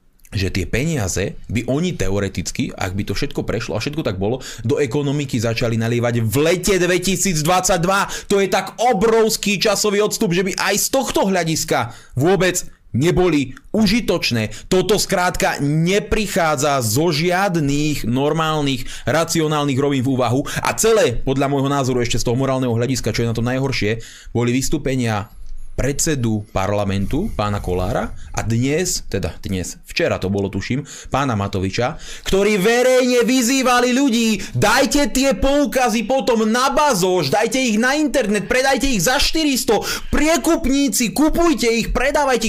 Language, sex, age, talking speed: Slovak, male, 30-49, 140 wpm